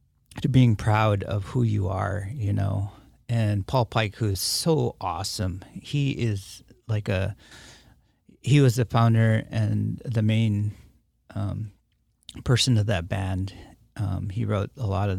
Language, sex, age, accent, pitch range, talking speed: English, male, 40-59, American, 95-115 Hz, 150 wpm